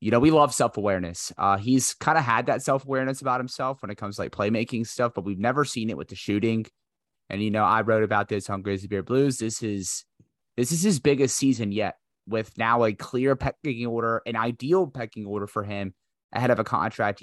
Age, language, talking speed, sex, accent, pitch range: 30-49, English, 225 wpm, male, American, 100-130 Hz